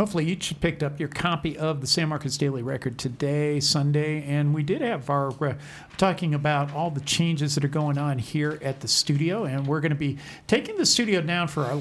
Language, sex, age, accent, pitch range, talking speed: English, male, 50-69, American, 145-170 Hz, 230 wpm